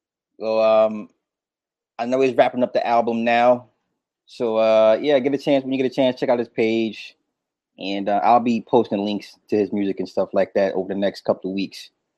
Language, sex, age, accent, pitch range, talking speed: English, male, 20-39, American, 105-125 Hz, 220 wpm